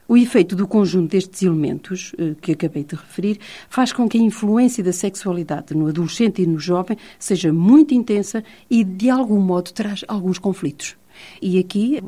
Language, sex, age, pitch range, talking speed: Portuguese, female, 50-69, 180-225 Hz, 170 wpm